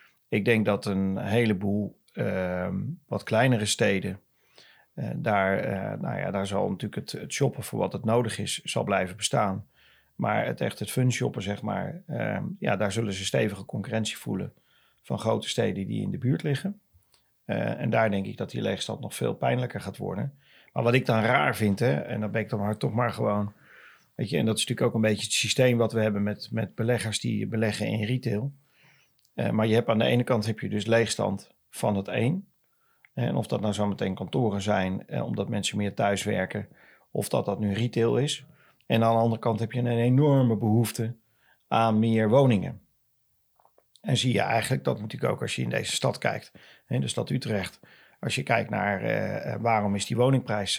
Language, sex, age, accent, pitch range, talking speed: Dutch, male, 40-59, Dutch, 105-120 Hz, 210 wpm